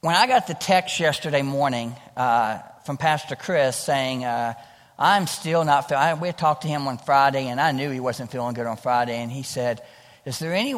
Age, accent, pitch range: 50-69, American, 130-180 Hz